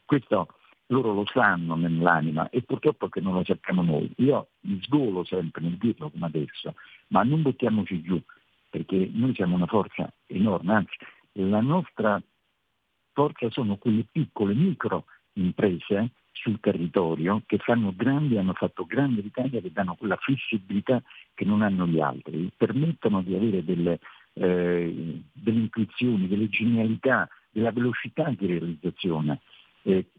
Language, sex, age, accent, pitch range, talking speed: Italian, male, 50-69, native, 90-120 Hz, 145 wpm